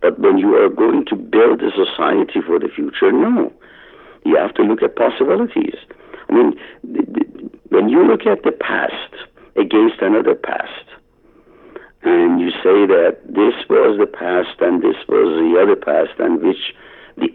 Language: English